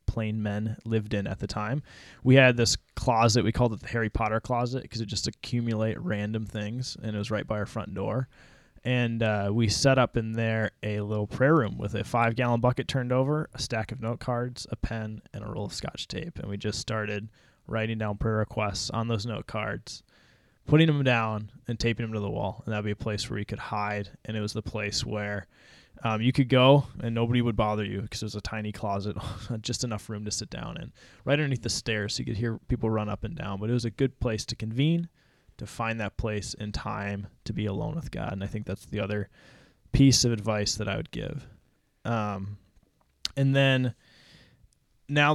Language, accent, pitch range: English, American, 105-125 Hz